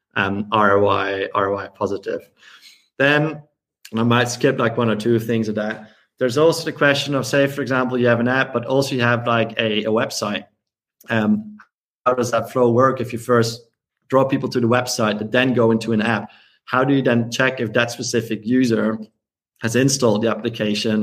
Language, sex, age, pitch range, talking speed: English, male, 30-49, 110-125 Hz, 195 wpm